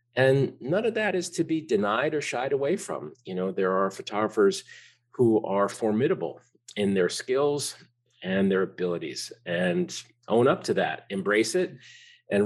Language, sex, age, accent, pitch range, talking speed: English, male, 50-69, American, 105-135 Hz, 165 wpm